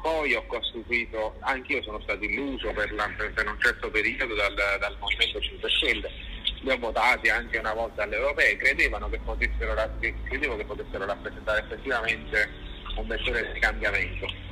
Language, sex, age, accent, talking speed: Italian, male, 30-49, native, 145 wpm